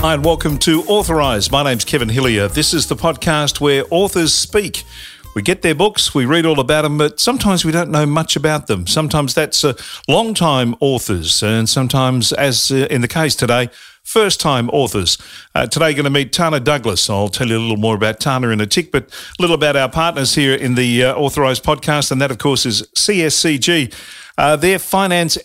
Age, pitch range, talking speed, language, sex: 50-69, 120-155 Hz, 205 wpm, English, male